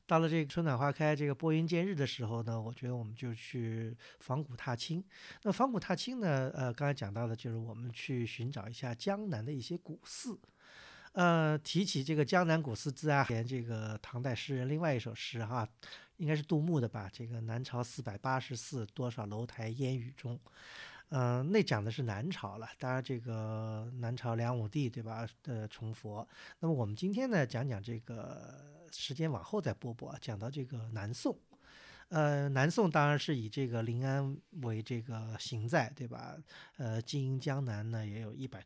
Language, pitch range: Chinese, 115-150 Hz